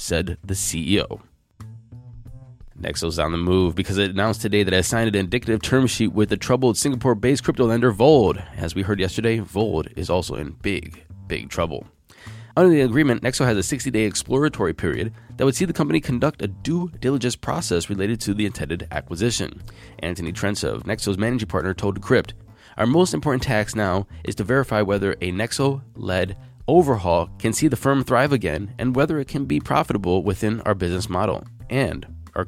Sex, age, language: male, 20-39, English